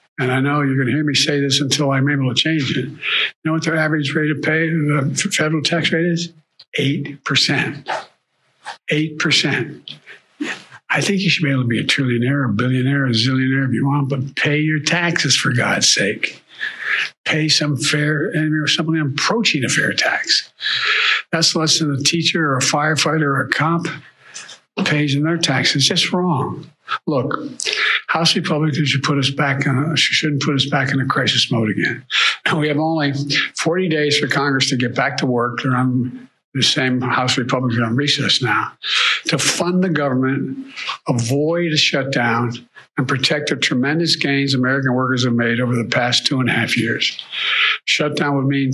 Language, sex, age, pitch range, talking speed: English, male, 60-79, 130-155 Hz, 185 wpm